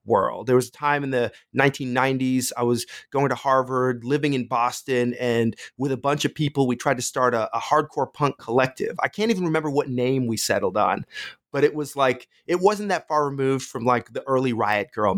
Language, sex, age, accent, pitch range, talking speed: English, male, 30-49, American, 120-150 Hz, 220 wpm